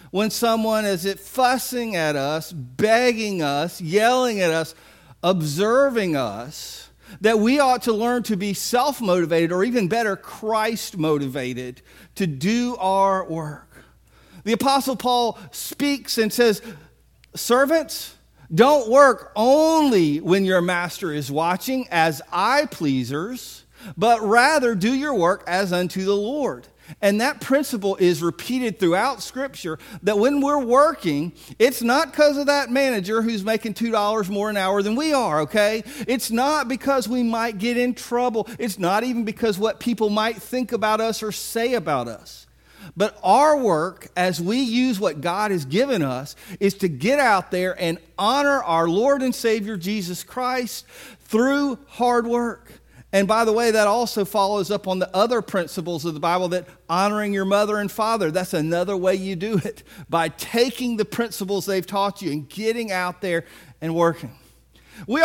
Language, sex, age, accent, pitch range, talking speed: English, male, 40-59, American, 180-240 Hz, 160 wpm